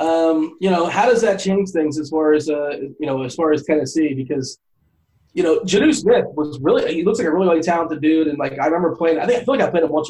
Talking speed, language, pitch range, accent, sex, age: 280 wpm, English, 150-200 Hz, American, male, 30-49